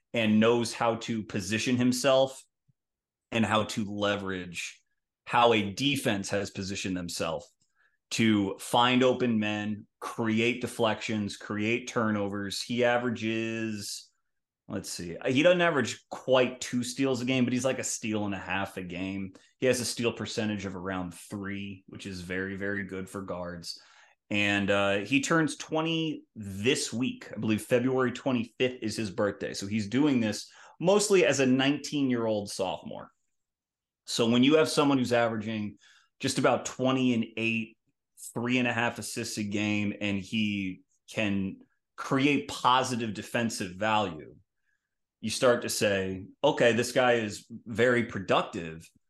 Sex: male